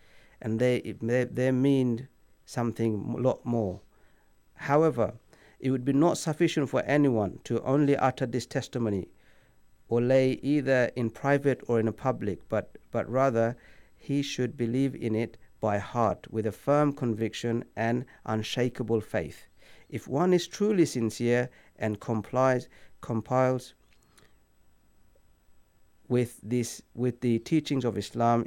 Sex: male